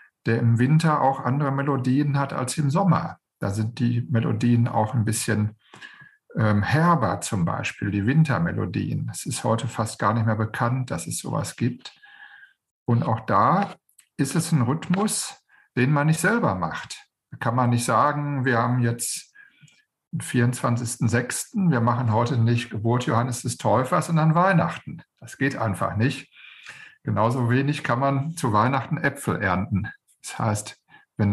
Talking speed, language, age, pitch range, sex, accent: 155 wpm, German, 50-69, 115-150 Hz, male, German